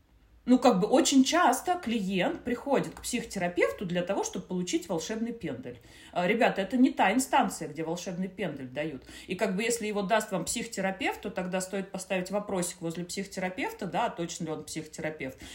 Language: Russian